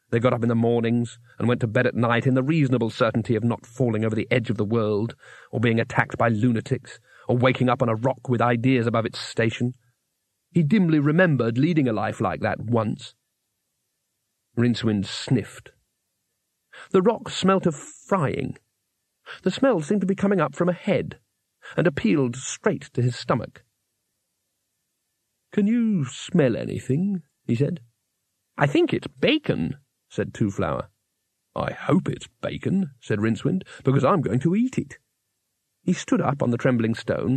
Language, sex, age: English, male, 40-59